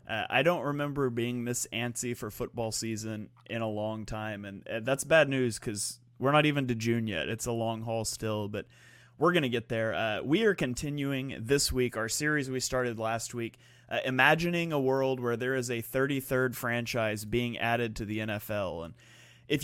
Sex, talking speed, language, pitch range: male, 200 wpm, English, 115-140 Hz